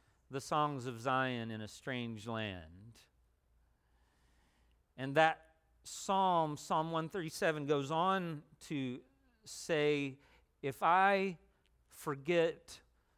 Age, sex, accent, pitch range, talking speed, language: 40-59, male, American, 105-155 Hz, 90 wpm, English